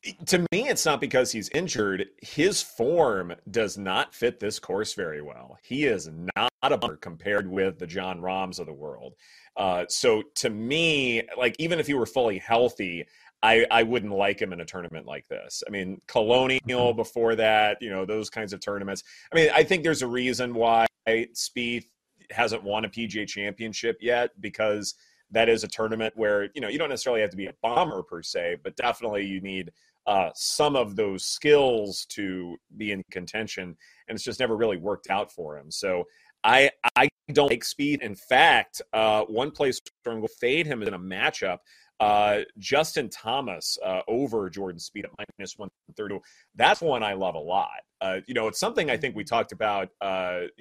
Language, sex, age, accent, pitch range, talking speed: English, male, 30-49, American, 100-140 Hz, 190 wpm